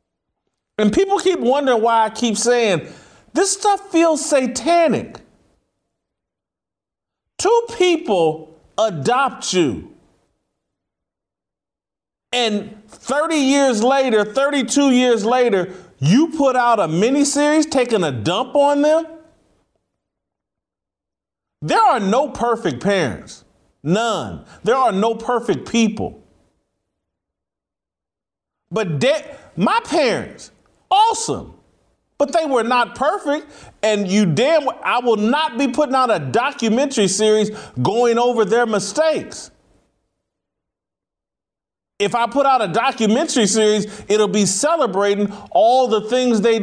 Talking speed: 110 wpm